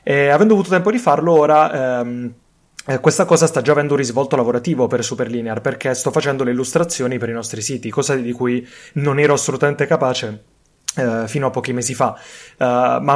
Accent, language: native, Italian